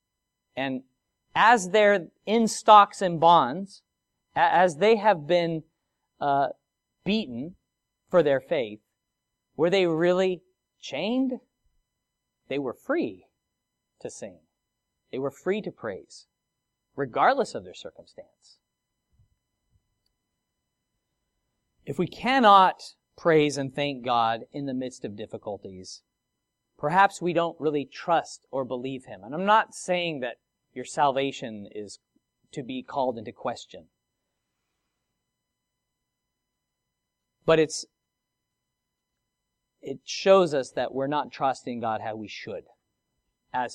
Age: 40-59